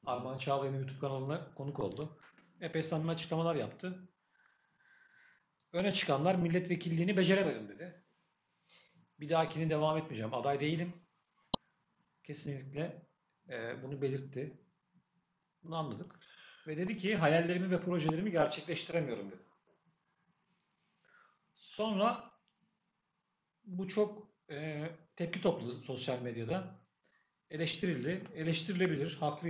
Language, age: Turkish, 50-69